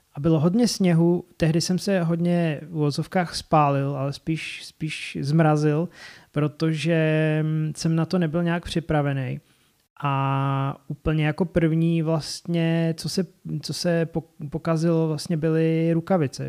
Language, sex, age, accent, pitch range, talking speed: Czech, male, 30-49, native, 150-170 Hz, 125 wpm